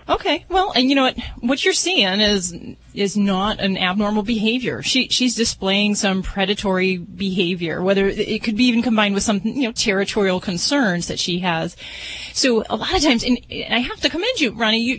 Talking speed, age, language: 210 wpm, 30-49, English